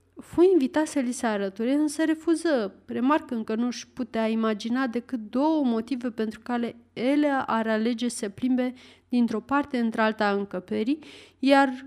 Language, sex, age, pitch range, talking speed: Romanian, female, 30-49, 220-285 Hz, 145 wpm